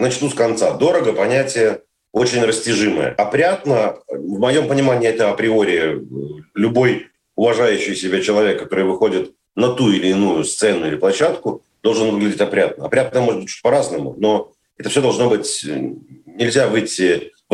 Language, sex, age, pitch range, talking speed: Russian, male, 40-59, 100-140 Hz, 140 wpm